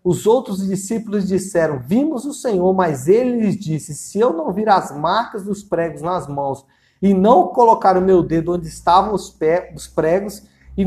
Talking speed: 175 wpm